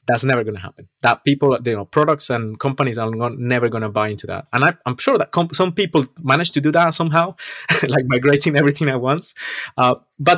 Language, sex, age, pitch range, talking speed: English, male, 30-49, 105-135 Hz, 225 wpm